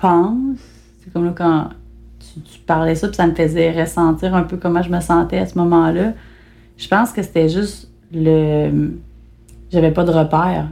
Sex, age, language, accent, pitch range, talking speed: female, 30-49, French, Canadian, 160-195 Hz, 185 wpm